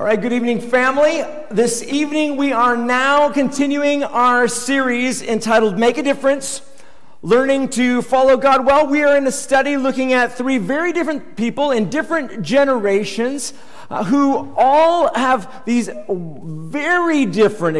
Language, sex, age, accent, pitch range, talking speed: English, male, 40-59, American, 215-275 Hz, 140 wpm